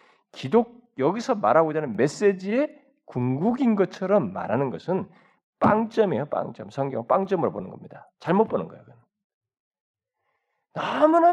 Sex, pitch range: male, 165-235 Hz